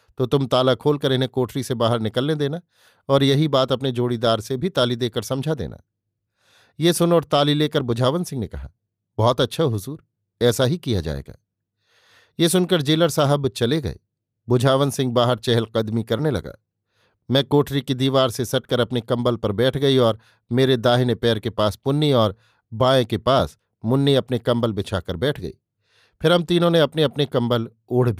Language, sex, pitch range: Hindi, male, 115-140 Hz